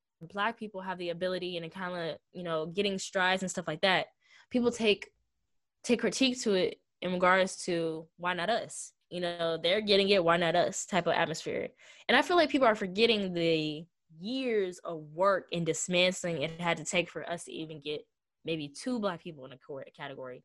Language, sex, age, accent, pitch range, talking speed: English, female, 10-29, American, 170-215 Hz, 205 wpm